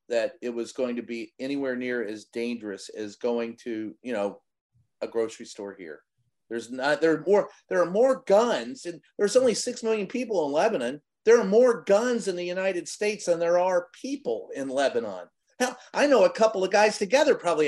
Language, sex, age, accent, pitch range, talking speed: English, male, 40-59, American, 120-195 Hz, 200 wpm